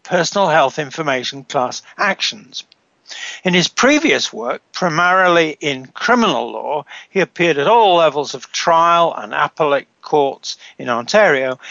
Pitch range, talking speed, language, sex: 145-190 Hz, 130 wpm, English, male